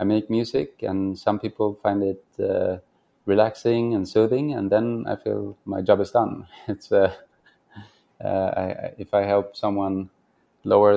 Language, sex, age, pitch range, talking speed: English, male, 20-39, 95-110 Hz, 160 wpm